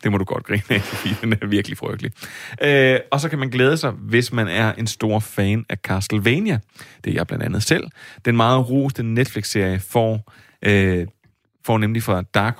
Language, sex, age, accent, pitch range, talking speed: Danish, male, 30-49, native, 100-125 Hz, 200 wpm